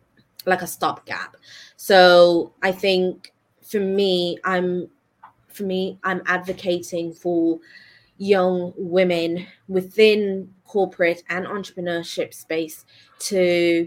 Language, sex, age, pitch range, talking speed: English, female, 20-39, 165-185 Hz, 95 wpm